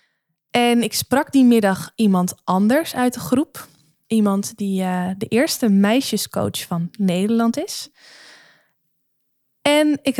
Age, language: 20-39, Dutch